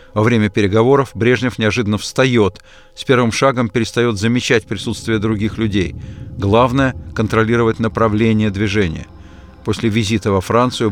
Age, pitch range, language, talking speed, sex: 50-69, 105-125 Hz, Russian, 125 wpm, male